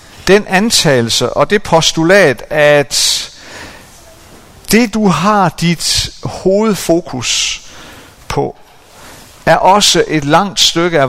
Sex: male